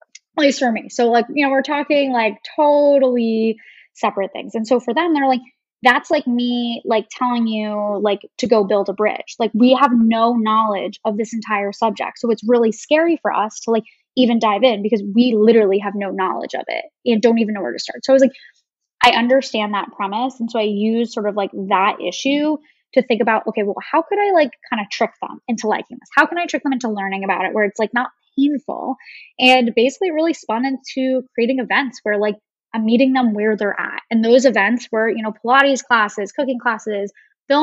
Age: 10-29